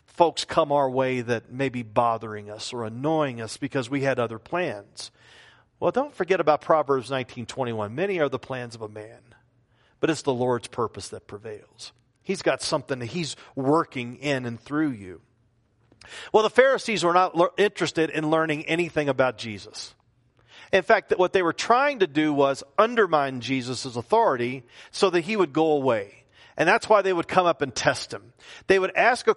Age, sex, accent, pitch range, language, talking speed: 40-59, male, American, 130-185 Hz, English, 185 wpm